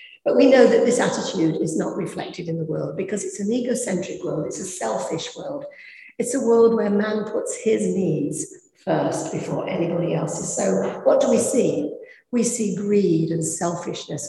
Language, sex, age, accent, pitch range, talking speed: English, female, 50-69, British, 165-240 Hz, 180 wpm